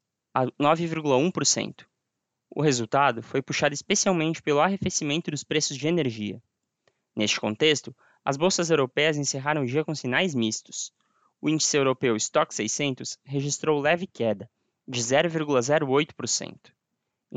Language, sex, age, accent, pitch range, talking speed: Portuguese, male, 20-39, Brazilian, 130-170 Hz, 115 wpm